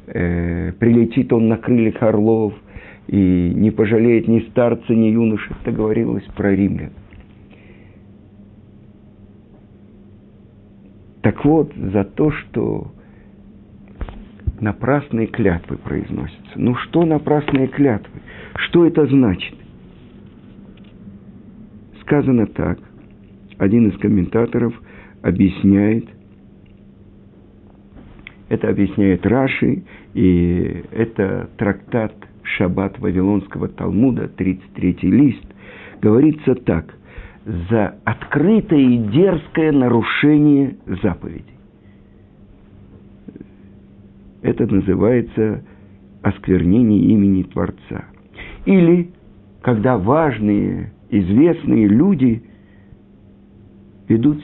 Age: 50-69